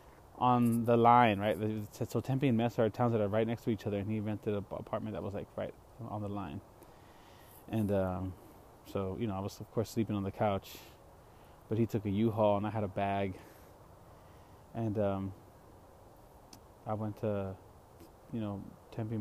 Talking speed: 185 wpm